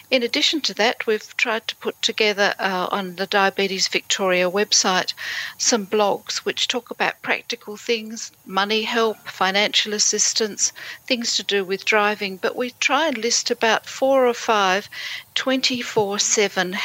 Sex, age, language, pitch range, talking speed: female, 50-69, English, 195-230 Hz, 145 wpm